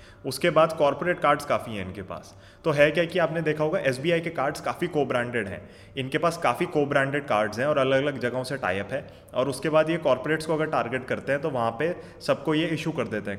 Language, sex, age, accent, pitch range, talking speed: Hindi, male, 20-39, native, 125-160 Hz, 240 wpm